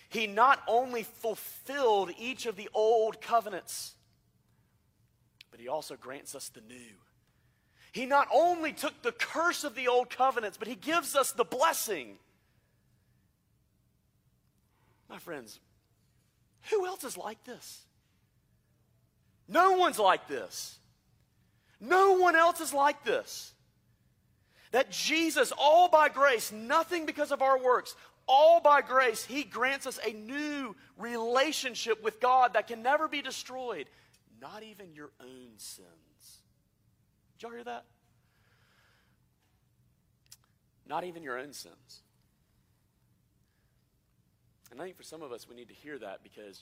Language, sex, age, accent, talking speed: English, male, 40-59, American, 130 wpm